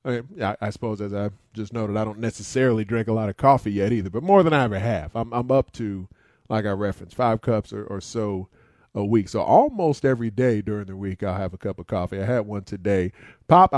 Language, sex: English, male